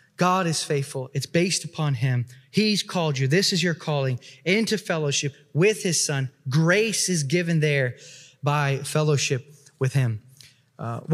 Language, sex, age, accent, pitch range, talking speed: English, male, 20-39, American, 145-185 Hz, 150 wpm